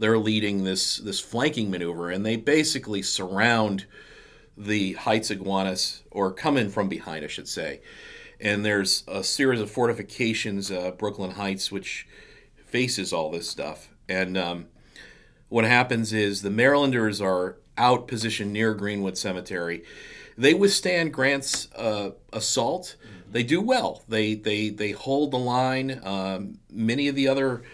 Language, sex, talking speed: English, male, 145 wpm